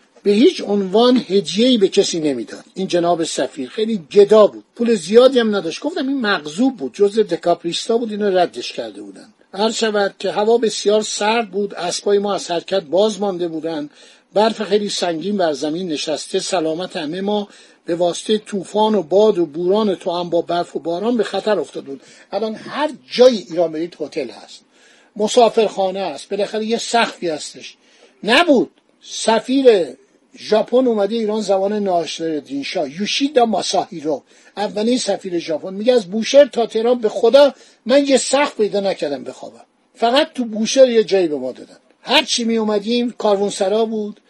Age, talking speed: 50-69, 160 wpm